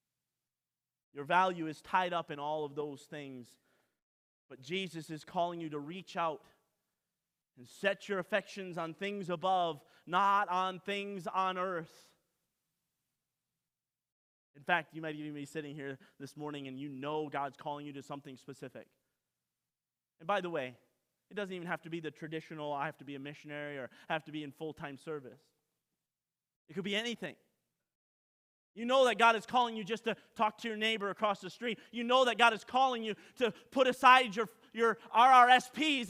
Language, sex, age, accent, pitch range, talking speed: English, male, 30-49, American, 150-225 Hz, 180 wpm